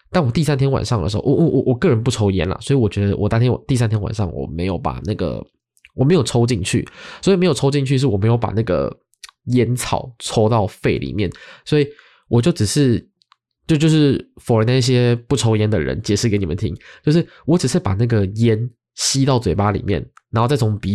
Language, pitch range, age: Chinese, 100-130 Hz, 20-39